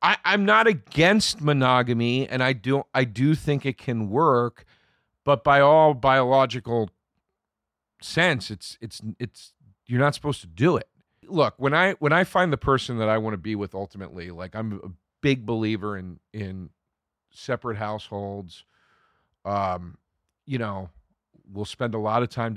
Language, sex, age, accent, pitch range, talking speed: English, male, 40-59, American, 100-130 Hz, 160 wpm